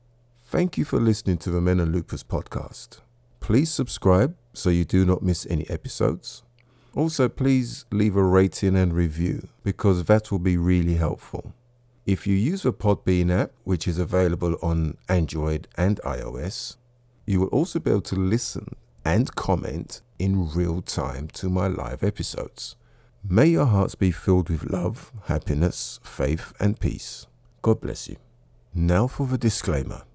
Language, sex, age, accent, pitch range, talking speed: English, male, 50-69, British, 90-120 Hz, 155 wpm